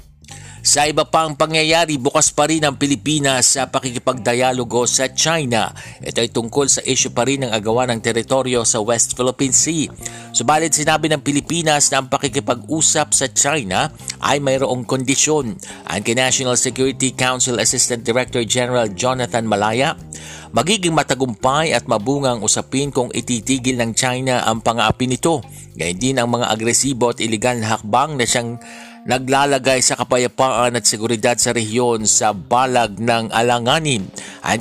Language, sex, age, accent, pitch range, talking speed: Filipino, male, 50-69, native, 115-135 Hz, 145 wpm